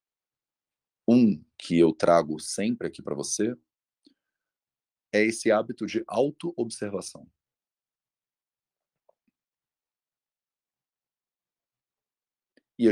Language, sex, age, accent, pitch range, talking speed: English, male, 40-59, Brazilian, 80-115 Hz, 70 wpm